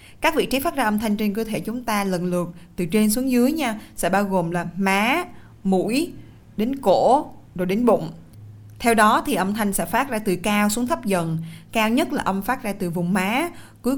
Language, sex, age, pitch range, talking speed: Vietnamese, female, 20-39, 180-245 Hz, 225 wpm